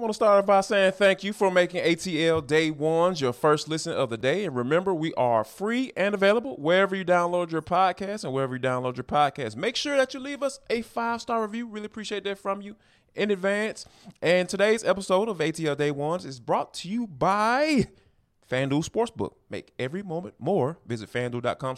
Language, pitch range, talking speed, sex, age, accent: English, 140-200 Hz, 205 wpm, male, 20-39, American